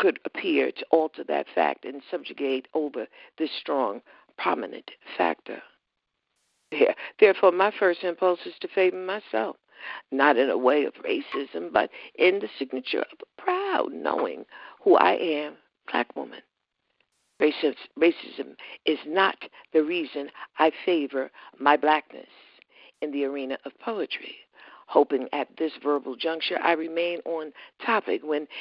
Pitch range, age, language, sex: 145-185 Hz, 60-79, English, female